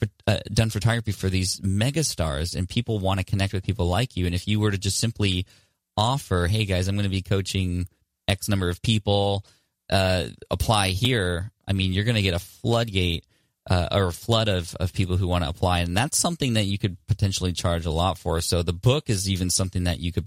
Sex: male